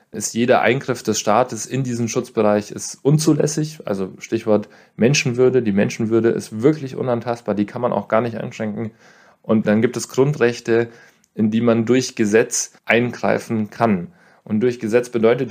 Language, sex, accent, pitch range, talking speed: German, male, German, 110-125 Hz, 160 wpm